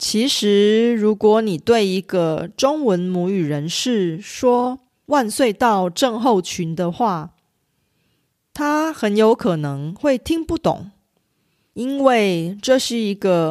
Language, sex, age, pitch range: Korean, female, 30-49, 180-250 Hz